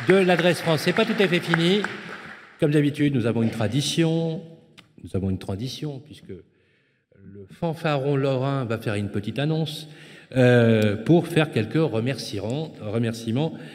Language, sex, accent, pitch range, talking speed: French, male, French, 115-145 Hz, 145 wpm